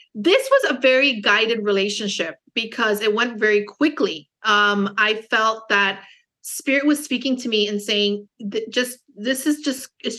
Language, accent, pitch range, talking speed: English, American, 205-260 Hz, 160 wpm